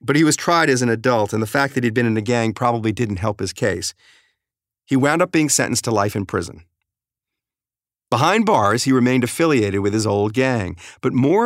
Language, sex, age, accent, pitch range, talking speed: English, male, 50-69, American, 105-140 Hz, 215 wpm